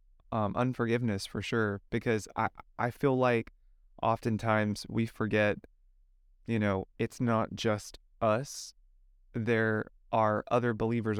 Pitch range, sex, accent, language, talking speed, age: 105-120 Hz, male, American, English, 120 wpm, 20-39